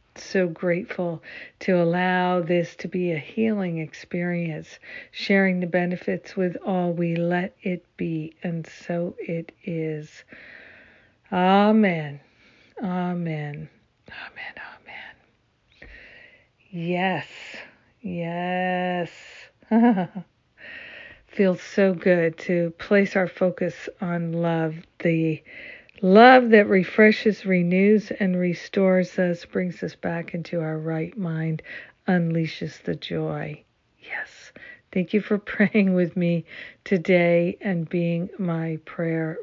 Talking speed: 105 wpm